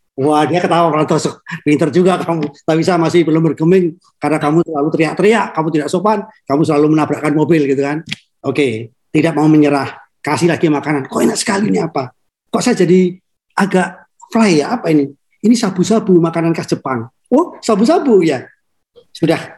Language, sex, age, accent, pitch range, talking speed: Indonesian, male, 40-59, native, 155-225 Hz, 155 wpm